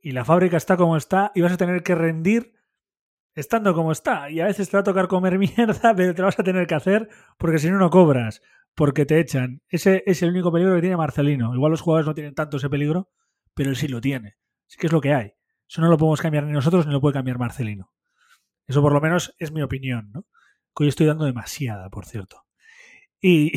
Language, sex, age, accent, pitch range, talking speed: Spanish, male, 30-49, Spanish, 145-180 Hz, 240 wpm